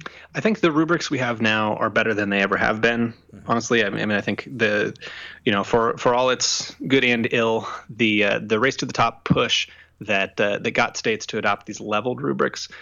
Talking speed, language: 220 wpm, English